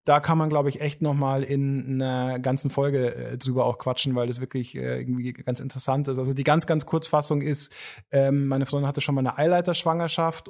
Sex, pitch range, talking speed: male, 140-160 Hz, 195 wpm